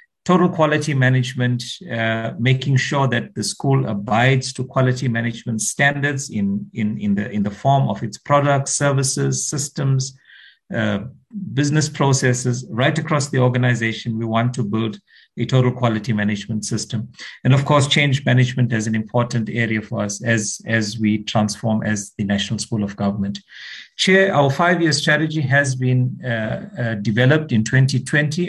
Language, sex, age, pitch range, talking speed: English, male, 50-69, 110-140 Hz, 150 wpm